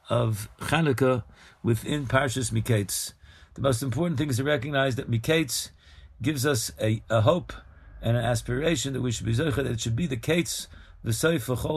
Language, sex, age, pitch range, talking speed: English, male, 50-69, 110-145 Hz, 170 wpm